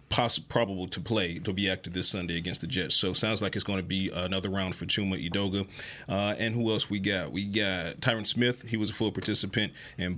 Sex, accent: male, American